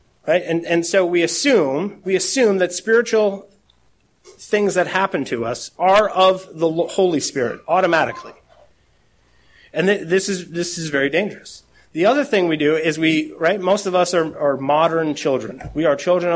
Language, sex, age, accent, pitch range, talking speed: English, male, 30-49, American, 150-195 Hz, 170 wpm